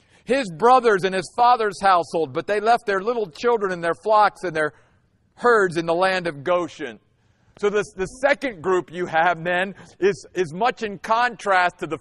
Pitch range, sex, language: 165-215 Hz, male, English